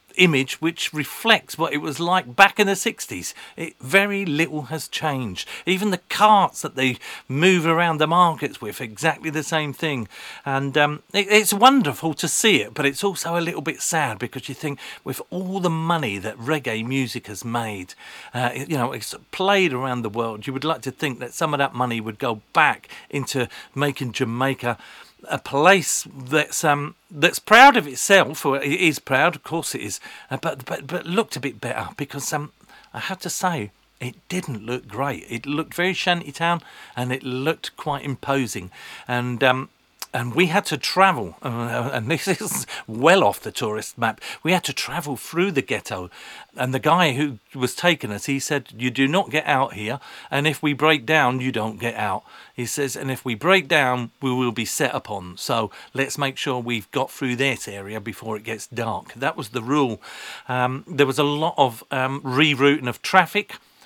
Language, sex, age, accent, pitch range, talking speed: English, male, 40-59, British, 125-165 Hz, 195 wpm